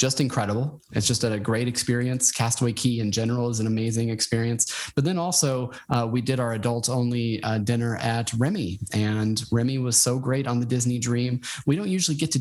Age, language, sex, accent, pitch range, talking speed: 20-39, English, male, American, 115-140 Hz, 200 wpm